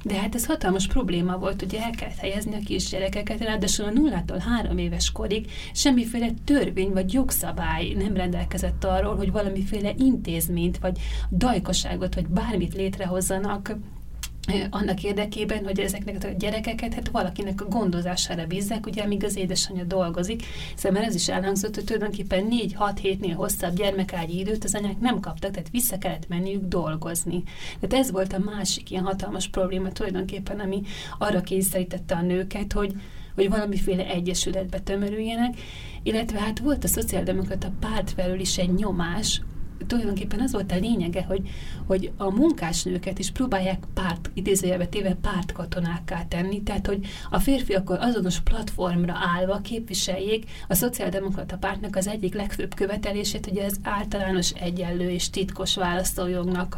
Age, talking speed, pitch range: 30-49, 145 wpm, 185-210 Hz